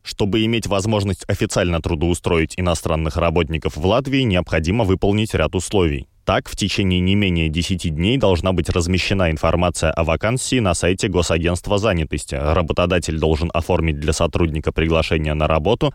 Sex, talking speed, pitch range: male, 145 wpm, 80-100 Hz